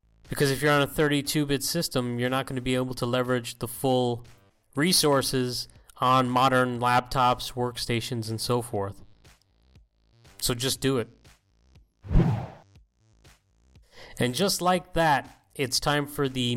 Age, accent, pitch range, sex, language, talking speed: 30-49, American, 120-150 Hz, male, English, 135 wpm